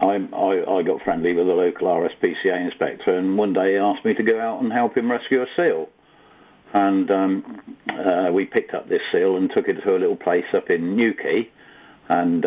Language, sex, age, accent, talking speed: English, male, 50-69, British, 205 wpm